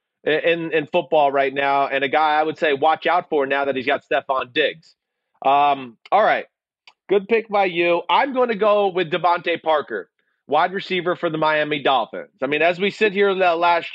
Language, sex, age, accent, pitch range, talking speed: English, male, 30-49, American, 165-200 Hz, 205 wpm